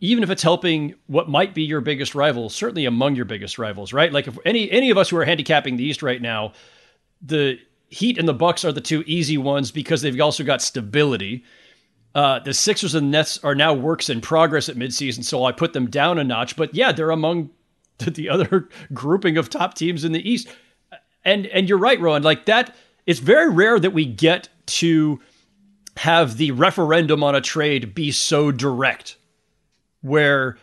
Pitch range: 140-175 Hz